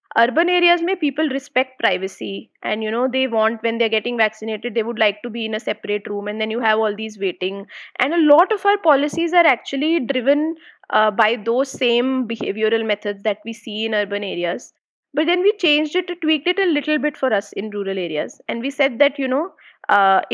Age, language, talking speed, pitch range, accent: 20-39, English, 220 wpm, 220-285 Hz, Indian